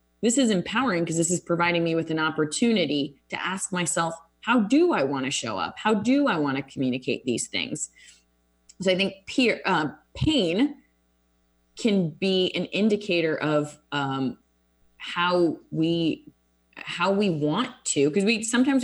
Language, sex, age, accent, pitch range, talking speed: English, female, 20-39, American, 140-175 Hz, 160 wpm